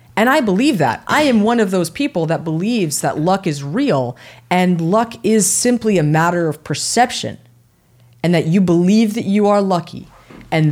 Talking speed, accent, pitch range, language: 185 wpm, American, 145-220 Hz, English